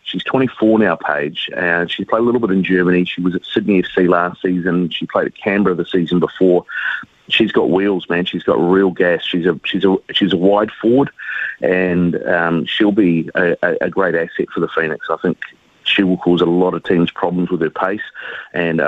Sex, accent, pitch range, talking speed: male, Australian, 85-100 Hz, 220 wpm